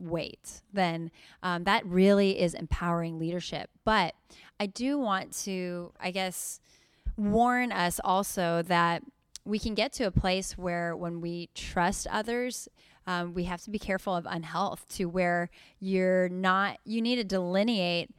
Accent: American